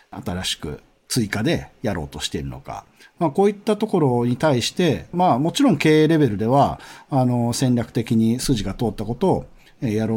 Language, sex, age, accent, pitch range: Japanese, male, 40-59, native, 105-155 Hz